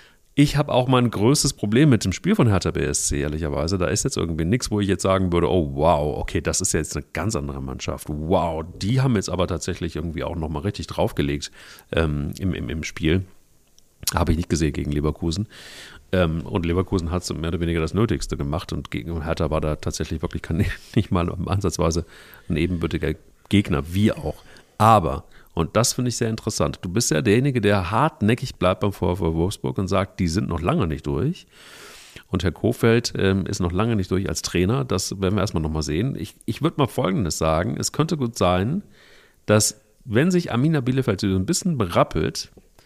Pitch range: 85-115 Hz